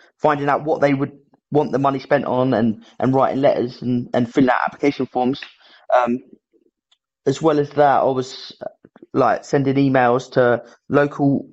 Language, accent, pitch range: English, British, 125-145 Hz